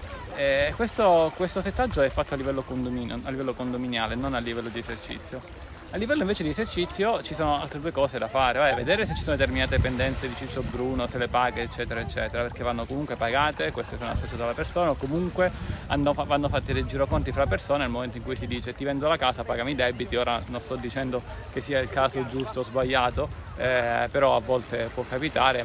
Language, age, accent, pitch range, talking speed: Italian, 20-39, native, 120-145 Hz, 220 wpm